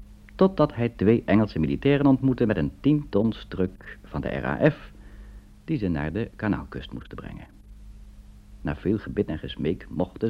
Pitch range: 85-105 Hz